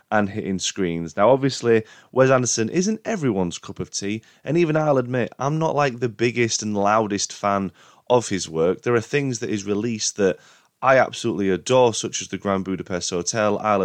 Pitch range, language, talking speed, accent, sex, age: 95-125 Hz, English, 190 wpm, British, male, 20-39